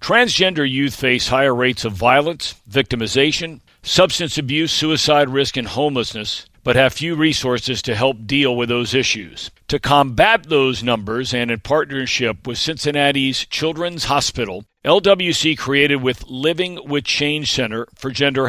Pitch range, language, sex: 125-150 Hz, English, male